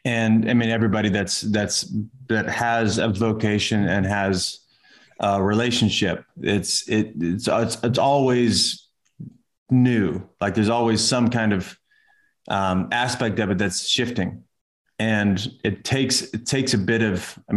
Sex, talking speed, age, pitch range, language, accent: male, 140 wpm, 30-49, 100-115 Hz, English, American